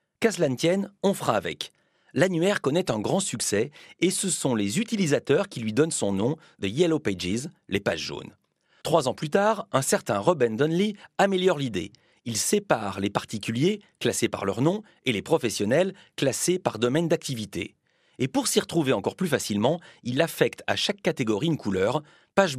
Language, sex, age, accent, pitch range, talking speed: Spanish, male, 40-59, French, 120-185 Hz, 180 wpm